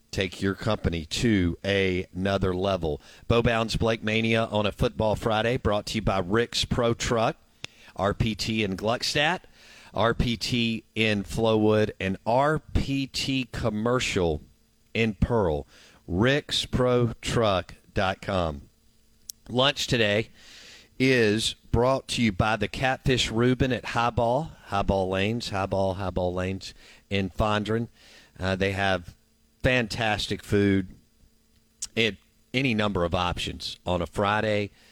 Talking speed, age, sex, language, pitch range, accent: 110 wpm, 50-69, male, English, 90-115 Hz, American